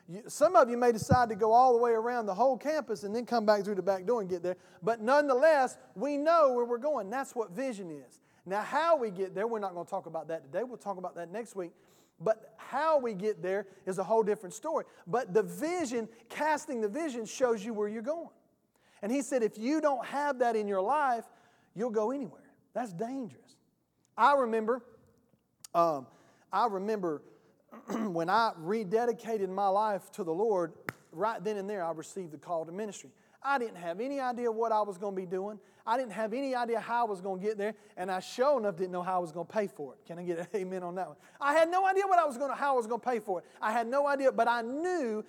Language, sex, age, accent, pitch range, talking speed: English, male, 40-59, American, 195-255 Hz, 245 wpm